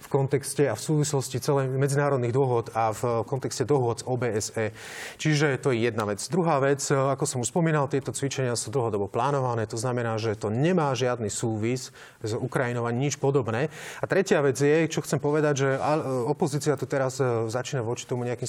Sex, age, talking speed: male, 30-49, 180 wpm